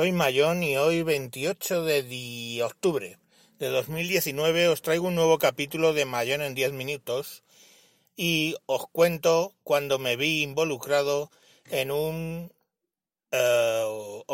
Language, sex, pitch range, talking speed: Spanish, male, 120-160 Hz, 125 wpm